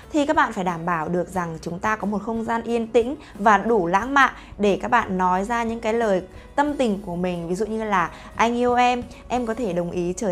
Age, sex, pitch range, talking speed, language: 20-39, female, 190-255 Hz, 260 wpm, Vietnamese